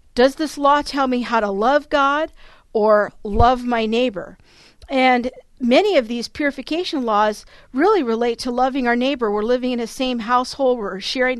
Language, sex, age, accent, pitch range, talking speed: English, female, 50-69, American, 225-270 Hz, 175 wpm